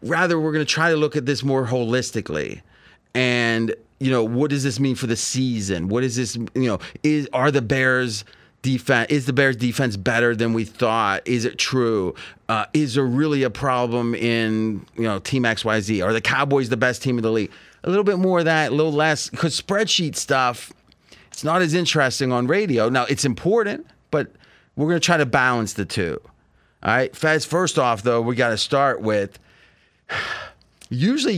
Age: 30-49